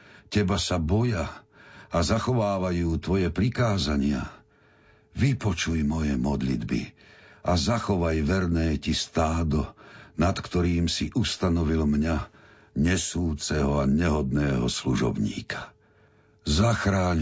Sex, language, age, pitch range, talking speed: male, Slovak, 60-79, 75-100 Hz, 85 wpm